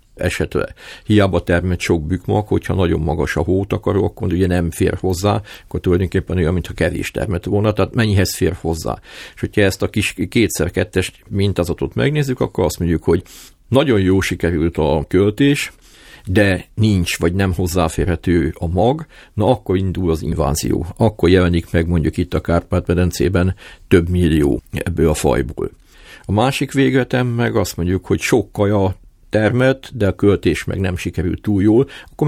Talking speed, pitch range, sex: 160 wpm, 85-105 Hz, male